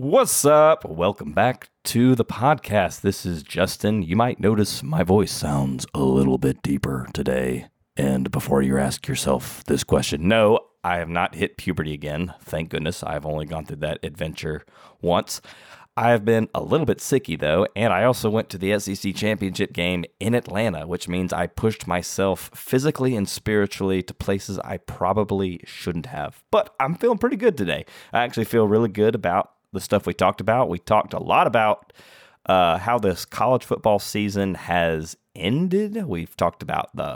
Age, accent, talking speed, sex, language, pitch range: 30-49, American, 180 wpm, male, English, 90-110 Hz